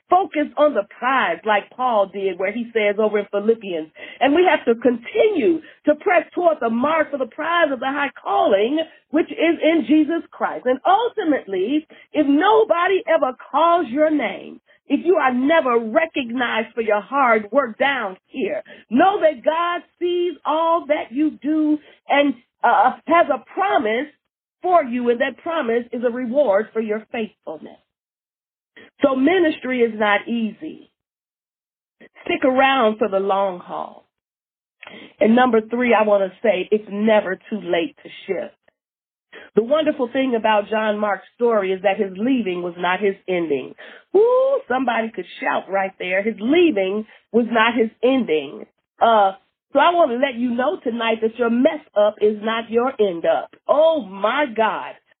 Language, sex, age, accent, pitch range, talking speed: English, female, 40-59, American, 215-310 Hz, 165 wpm